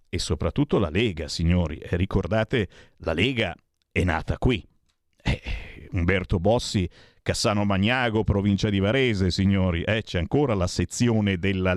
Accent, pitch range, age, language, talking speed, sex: native, 95-140 Hz, 50-69, Italian, 145 wpm, male